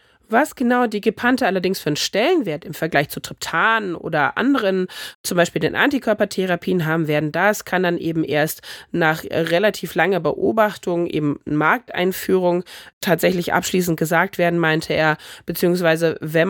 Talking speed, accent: 140 wpm, German